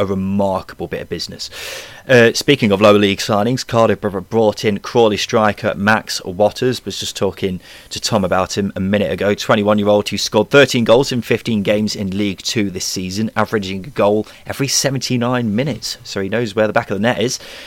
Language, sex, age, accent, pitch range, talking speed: English, male, 30-49, British, 100-130 Hz, 195 wpm